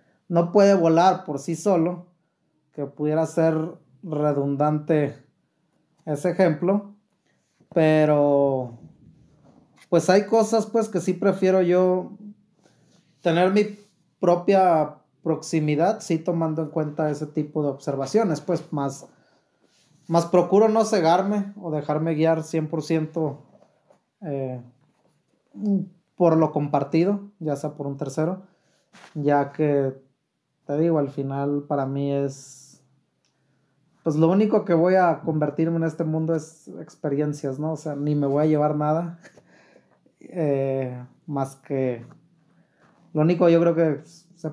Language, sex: Spanish, male